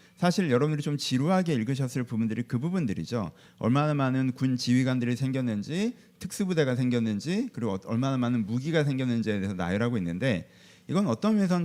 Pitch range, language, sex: 120-190 Hz, Korean, male